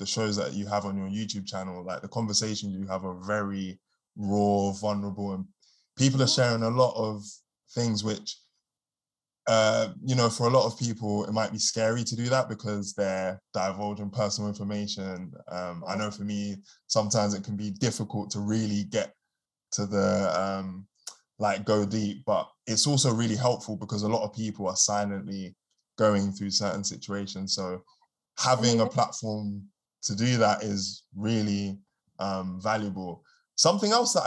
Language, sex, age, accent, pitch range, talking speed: English, male, 20-39, British, 100-115 Hz, 170 wpm